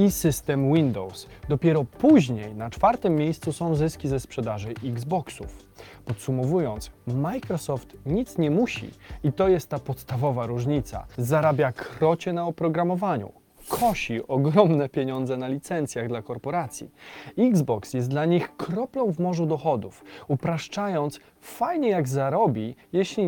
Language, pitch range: Polish, 120-170 Hz